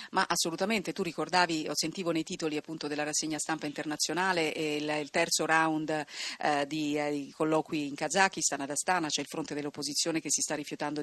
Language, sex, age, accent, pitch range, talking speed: Italian, female, 40-59, native, 155-185 Hz, 190 wpm